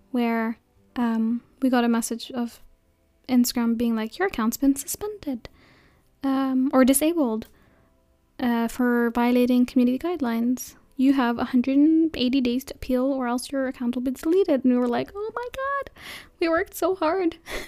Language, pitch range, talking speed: English, 240-285 Hz, 155 wpm